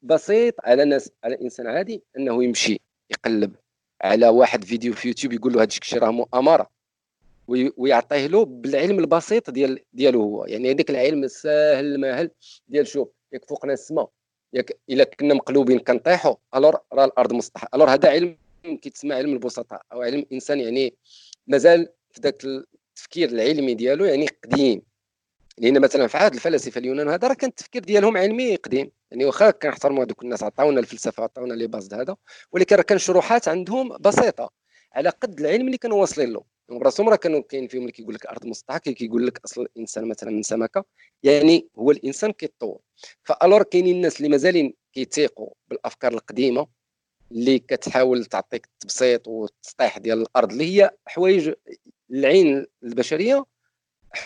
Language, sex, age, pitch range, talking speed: Arabic, male, 40-59, 125-195 Hz, 160 wpm